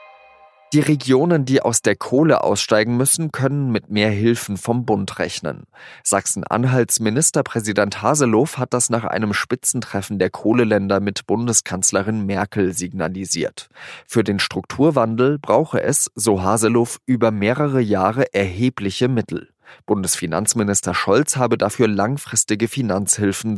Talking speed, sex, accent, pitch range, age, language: 120 wpm, male, German, 100-125 Hz, 30-49, German